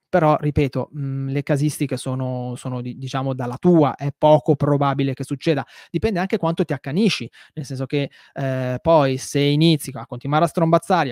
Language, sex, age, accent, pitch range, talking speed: Italian, male, 20-39, native, 130-160 Hz, 165 wpm